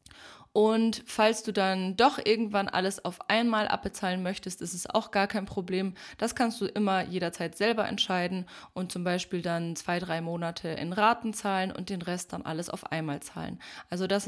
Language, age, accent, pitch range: German, 20-39, German, 180-220 Hz